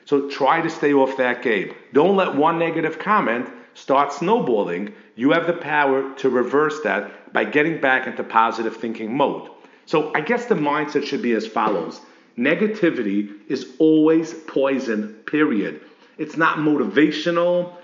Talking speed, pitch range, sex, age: 150 wpm, 130-175 Hz, male, 50-69